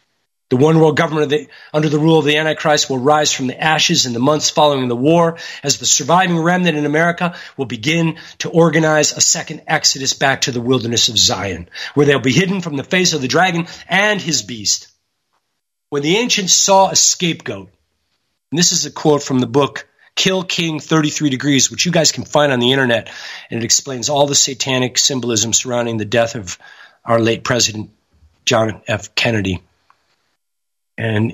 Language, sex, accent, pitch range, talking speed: English, male, American, 120-180 Hz, 185 wpm